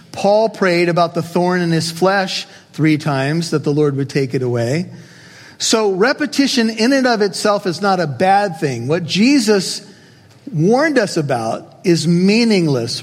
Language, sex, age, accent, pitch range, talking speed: English, male, 40-59, American, 150-185 Hz, 160 wpm